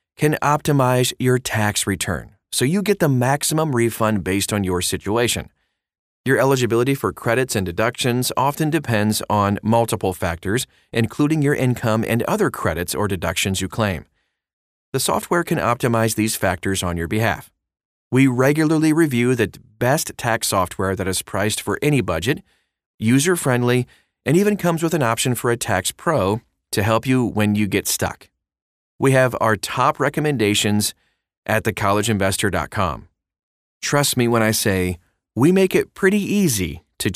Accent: American